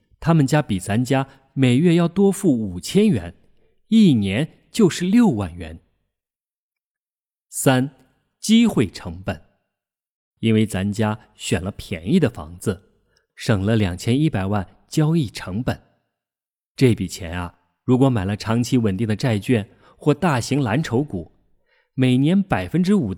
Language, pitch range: Chinese, 100-155 Hz